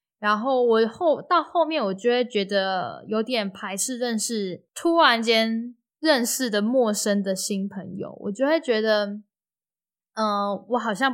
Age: 10-29